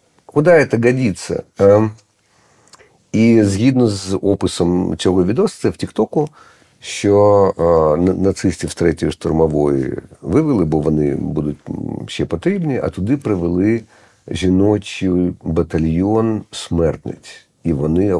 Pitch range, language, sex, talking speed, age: 95-125 Hz, Ukrainian, male, 110 wpm, 50-69